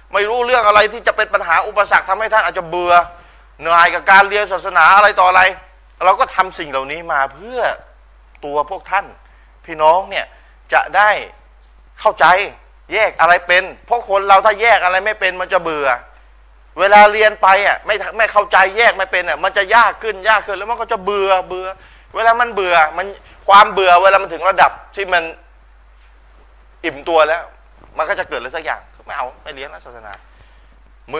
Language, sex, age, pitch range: Thai, male, 20-39, 155-205 Hz